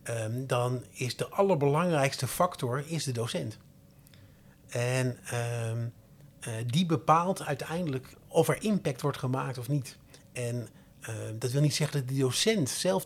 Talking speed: 145 wpm